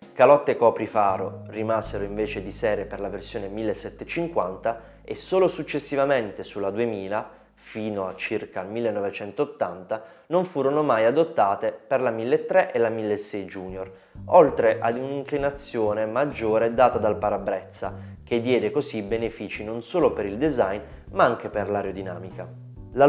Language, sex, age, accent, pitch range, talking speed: Italian, male, 20-39, native, 105-150 Hz, 135 wpm